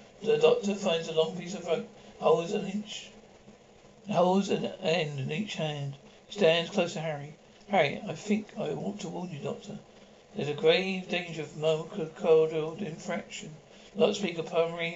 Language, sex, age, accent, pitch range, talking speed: English, male, 60-79, British, 160-205 Hz, 165 wpm